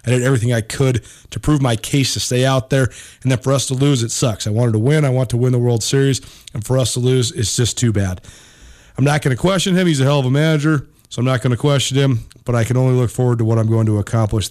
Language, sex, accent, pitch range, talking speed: English, male, American, 110-135 Hz, 300 wpm